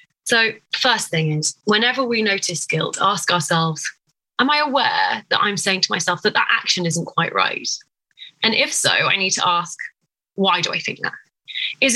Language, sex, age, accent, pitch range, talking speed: English, female, 20-39, British, 180-295 Hz, 185 wpm